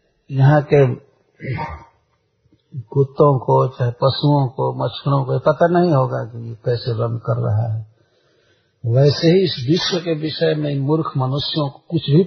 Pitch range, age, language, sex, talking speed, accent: 125-155 Hz, 60-79, Hindi, male, 150 wpm, native